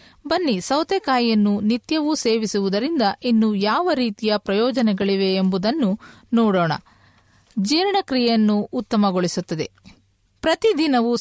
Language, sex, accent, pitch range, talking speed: Kannada, female, native, 200-265 Hz, 70 wpm